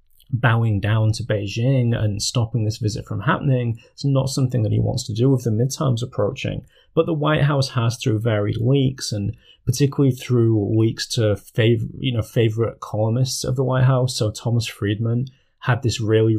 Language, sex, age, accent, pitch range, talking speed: English, male, 20-39, British, 105-125 Hz, 185 wpm